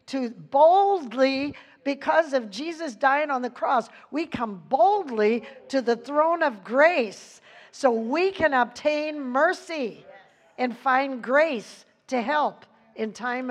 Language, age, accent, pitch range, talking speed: English, 60-79, American, 245-310 Hz, 130 wpm